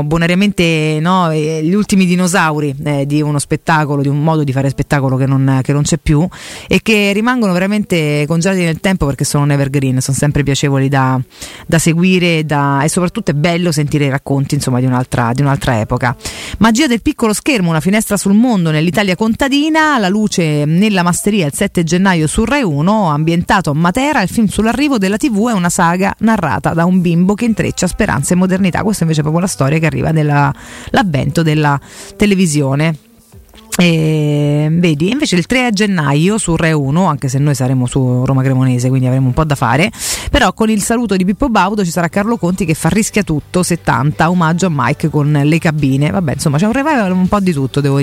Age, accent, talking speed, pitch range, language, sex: 30-49, native, 195 wpm, 145-195 Hz, Italian, female